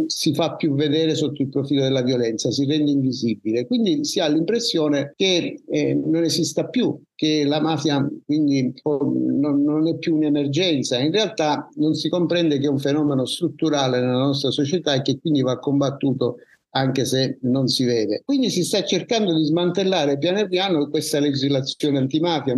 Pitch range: 135-160 Hz